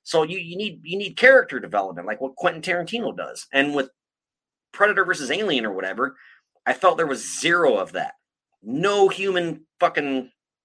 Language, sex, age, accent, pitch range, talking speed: English, male, 30-49, American, 125-190 Hz, 170 wpm